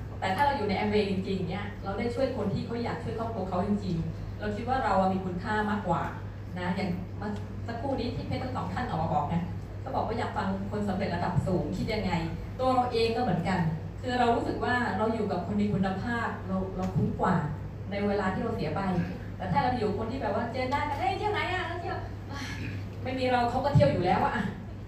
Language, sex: Thai, female